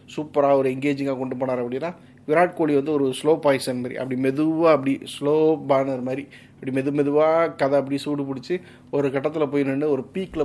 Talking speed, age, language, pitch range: 140 wpm, 30-49, Tamil, 130-150 Hz